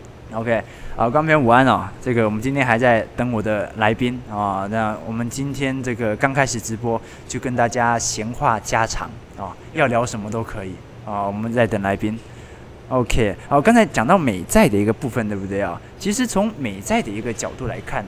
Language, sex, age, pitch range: Chinese, male, 20-39, 105-135 Hz